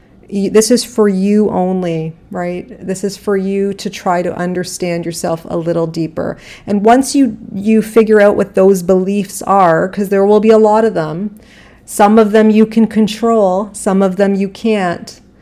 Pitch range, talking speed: 180-215 Hz, 185 wpm